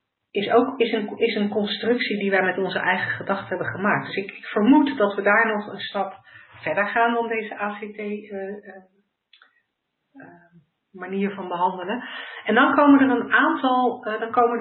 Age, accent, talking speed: 50-69, Dutch, 175 wpm